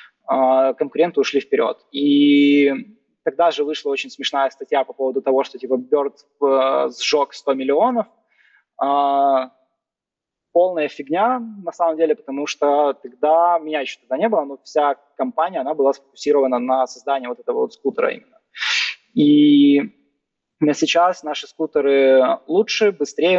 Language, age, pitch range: Russian, 20-39, 135-170 Hz